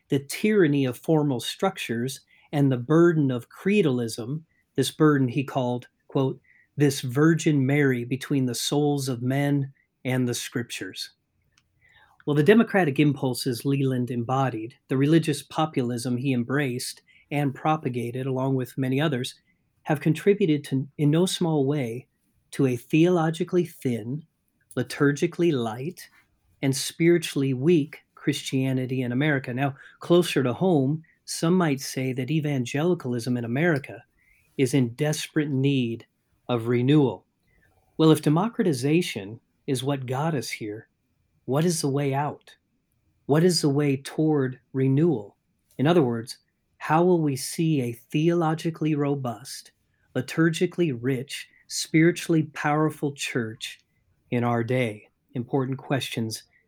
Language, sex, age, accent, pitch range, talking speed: English, male, 40-59, American, 125-155 Hz, 125 wpm